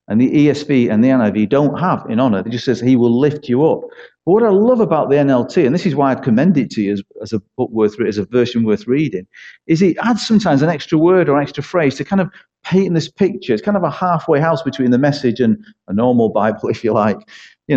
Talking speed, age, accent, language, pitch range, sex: 265 wpm, 40-59, British, English, 120-175 Hz, male